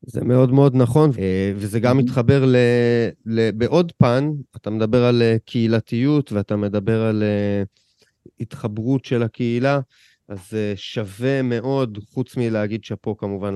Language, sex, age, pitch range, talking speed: Hebrew, male, 30-49, 100-120 Hz, 130 wpm